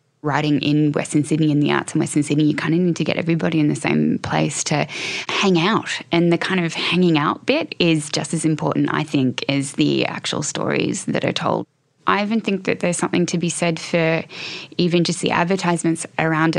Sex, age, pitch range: female, 10-29, 150-175 Hz